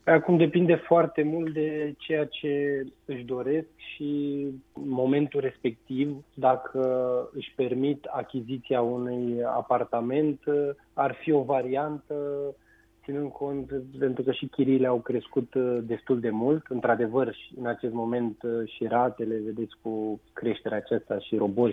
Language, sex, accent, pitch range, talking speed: Romanian, male, native, 115-135 Hz, 125 wpm